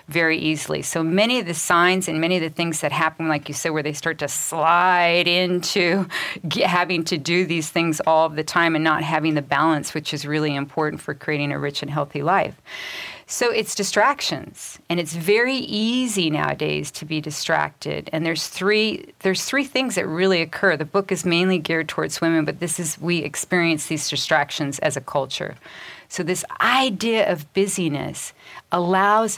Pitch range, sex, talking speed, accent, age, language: 150-190 Hz, female, 190 wpm, American, 40-59, English